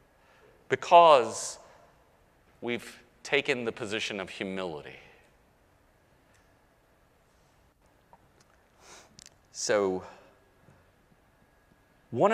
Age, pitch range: 40-59, 165-235 Hz